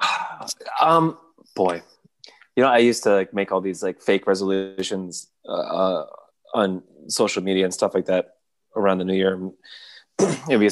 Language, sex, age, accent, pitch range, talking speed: English, male, 20-39, American, 95-115 Hz, 155 wpm